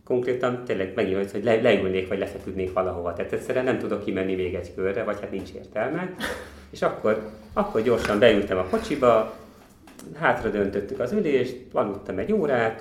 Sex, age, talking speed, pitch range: male, 30-49, 160 wpm, 95-120 Hz